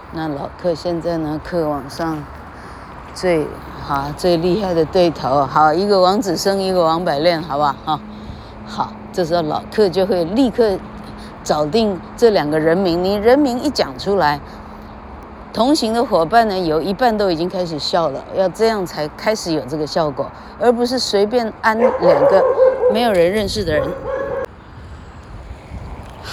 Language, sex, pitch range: Chinese, female, 160-220 Hz